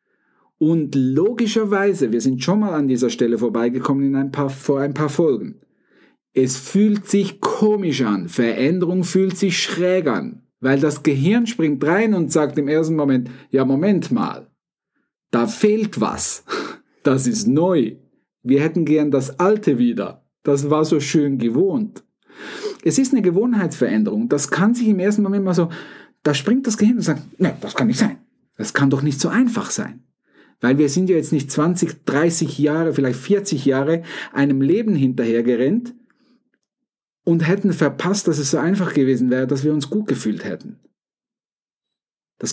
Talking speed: 165 wpm